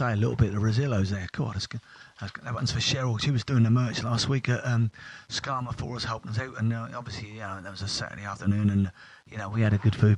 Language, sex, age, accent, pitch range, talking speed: English, male, 30-49, British, 100-125 Hz, 275 wpm